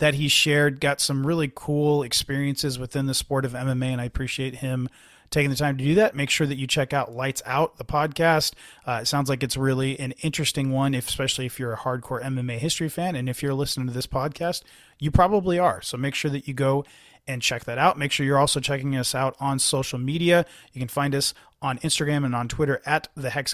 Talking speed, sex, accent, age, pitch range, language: 235 wpm, male, American, 30-49, 130-155 Hz, English